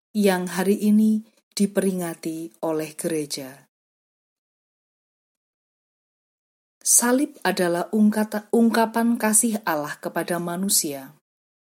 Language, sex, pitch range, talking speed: Indonesian, female, 160-210 Hz, 65 wpm